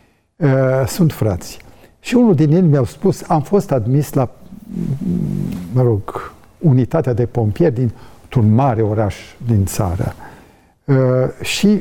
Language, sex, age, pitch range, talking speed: Romanian, male, 50-69, 120-170 Hz, 120 wpm